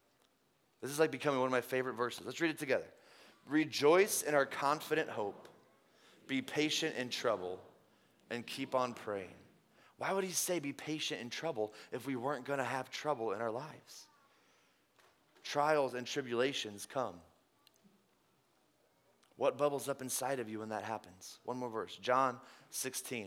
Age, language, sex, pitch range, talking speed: 20-39, English, male, 125-165 Hz, 155 wpm